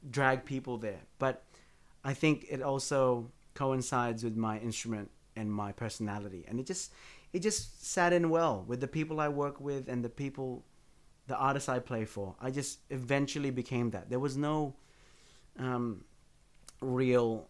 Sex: male